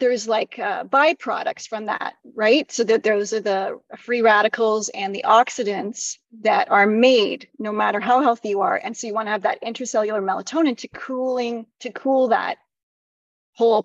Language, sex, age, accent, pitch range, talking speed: English, female, 30-49, American, 215-250 Hz, 180 wpm